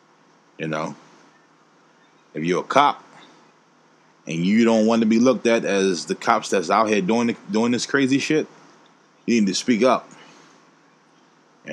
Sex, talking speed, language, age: male, 165 wpm, English, 20-39